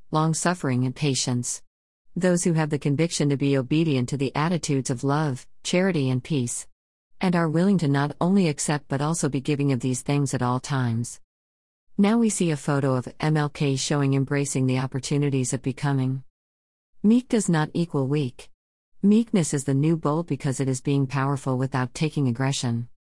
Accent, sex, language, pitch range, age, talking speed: American, female, English, 130-160 Hz, 50-69, 175 wpm